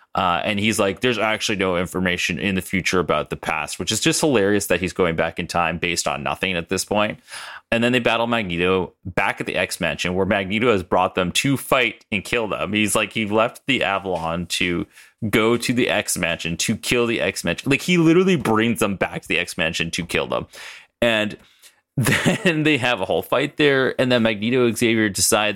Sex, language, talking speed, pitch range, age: male, English, 210 wpm, 90-125 Hz, 30-49